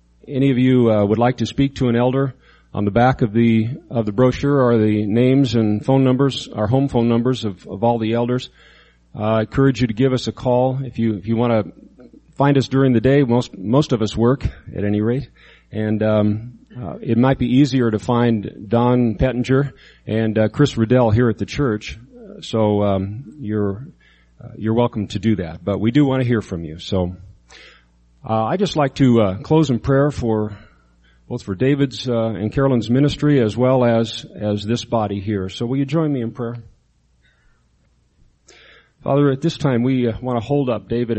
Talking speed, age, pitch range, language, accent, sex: 205 wpm, 40-59, 105-130 Hz, English, American, male